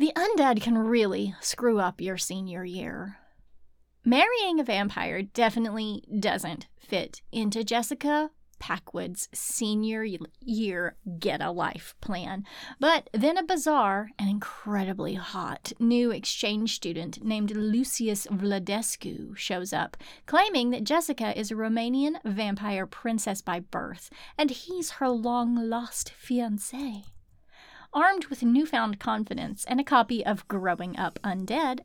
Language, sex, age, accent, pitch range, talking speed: English, female, 30-49, American, 200-260 Hz, 120 wpm